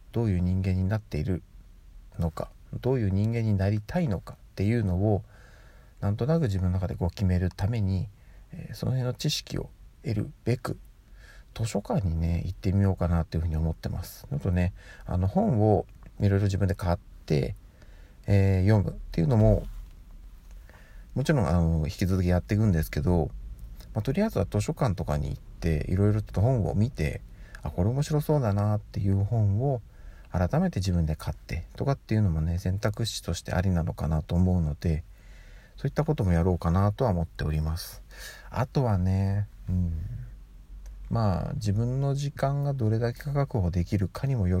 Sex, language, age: male, Japanese, 40-59